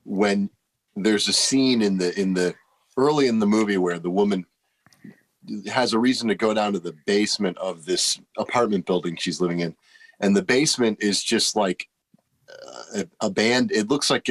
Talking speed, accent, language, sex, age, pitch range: 180 wpm, American, English, male, 40-59, 95-115 Hz